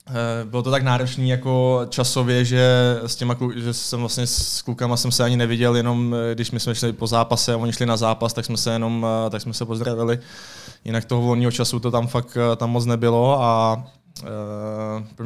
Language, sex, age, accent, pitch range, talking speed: Czech, male, 20-39, native, 110-120 Hz, 200 wpm